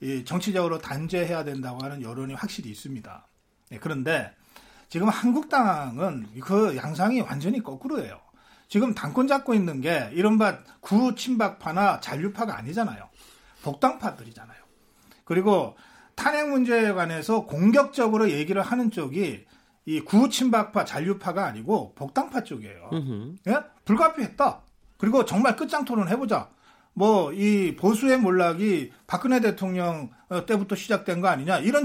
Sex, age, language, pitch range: male, 40-59, Korean, 180-245 Hz